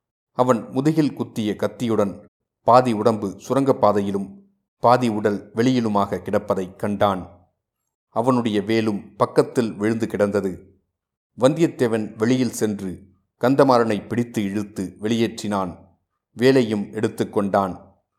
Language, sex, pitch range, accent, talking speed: Tamil, male, 100-120 Hz, native, 90 wpm